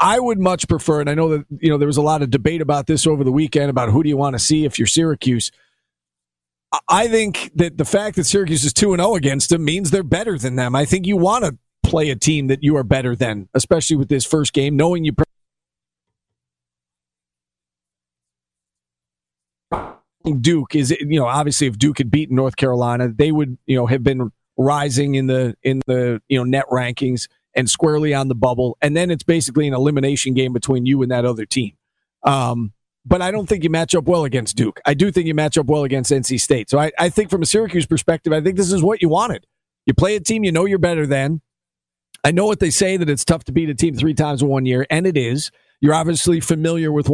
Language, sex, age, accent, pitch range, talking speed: English, male, 40-59, American, 130-165 Hz, 235 wpm